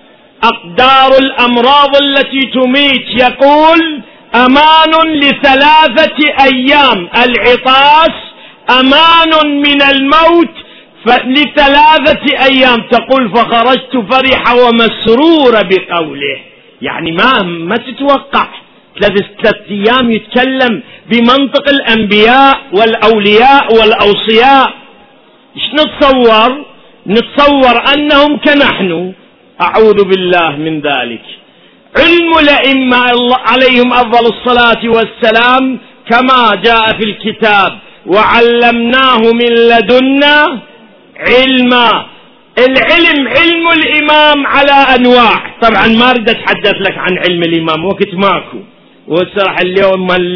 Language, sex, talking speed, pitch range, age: Arabic, male, 85 wpm, 220-275 Hz, 50-69